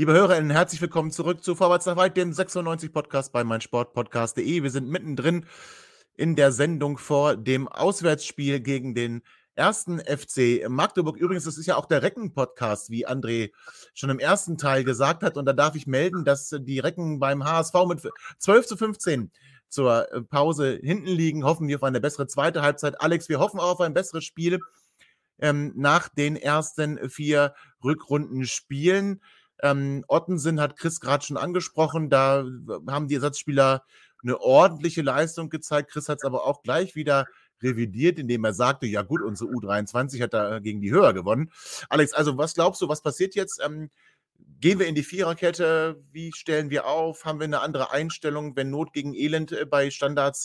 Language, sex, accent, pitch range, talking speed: German, male, German, 135-165 Hz, 175 wpm